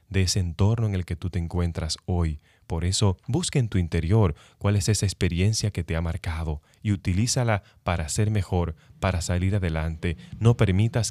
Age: 30-49